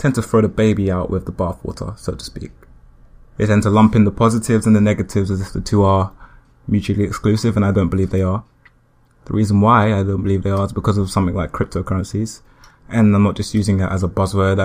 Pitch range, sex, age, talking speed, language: 95-110 Hz, male, 20-39, 240 wpm, English